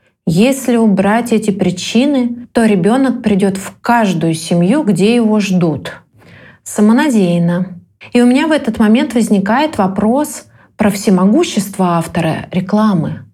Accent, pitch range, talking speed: native, 180-235 Hz, 115 wpm